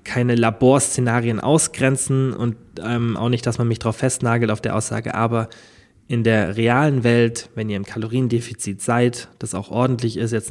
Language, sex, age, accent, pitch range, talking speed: German, male, 20-39, German, 110-135 Hz, 170 wpm